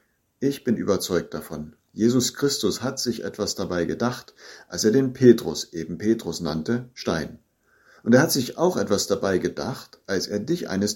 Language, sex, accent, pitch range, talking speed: German, male, German, 90-125 Hz, 170 wpm